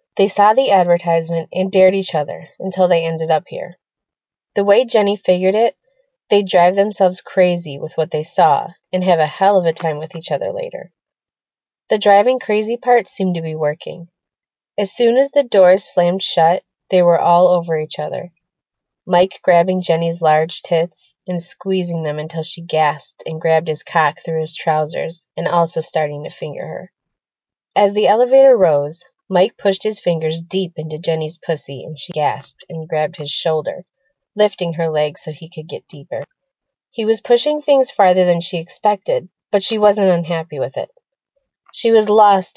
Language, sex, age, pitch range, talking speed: English, female, 20-39, 160-200 Hz, 180 wpm